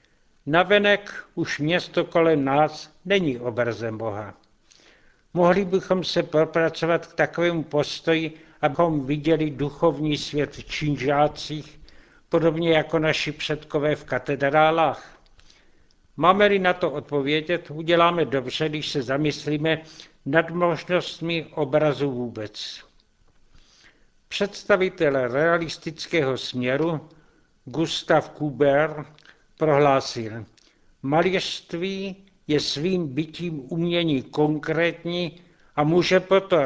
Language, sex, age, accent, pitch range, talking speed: Czech, male, 60-79, native, 145-170 Hz, 85 wpm